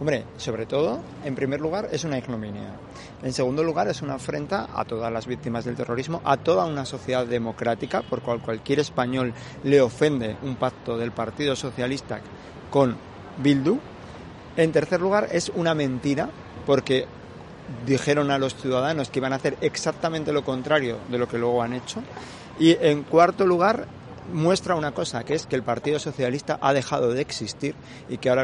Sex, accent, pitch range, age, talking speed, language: male, Spanish, 115-140 Hz, 40-59, 175 wpm, Spanish